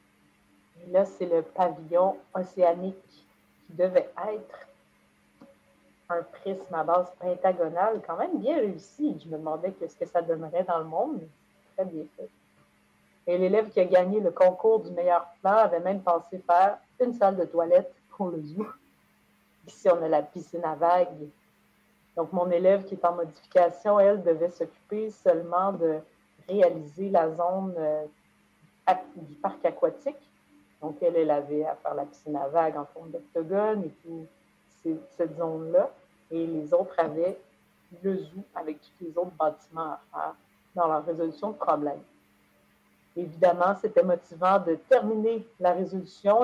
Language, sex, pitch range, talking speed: French, female, 165-195 Hz, 160 wpm